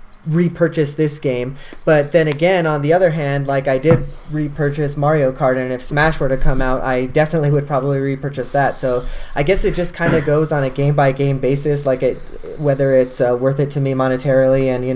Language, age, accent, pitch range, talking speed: English, 30-49, American, 130-150 Hz, 220 wpm